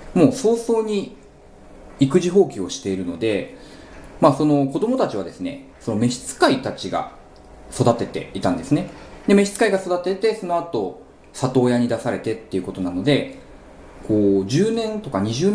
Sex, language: male, Japanese